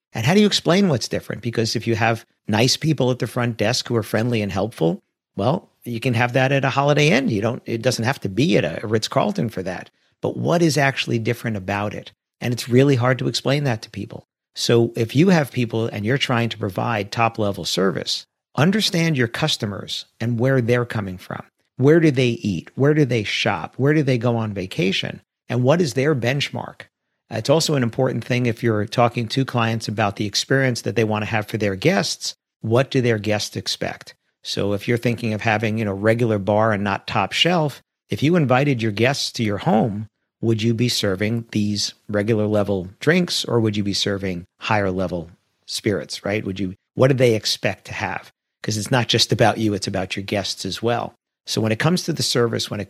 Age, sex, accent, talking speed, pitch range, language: 50-69, male, American, 215 wpm, 105-130 Hz, English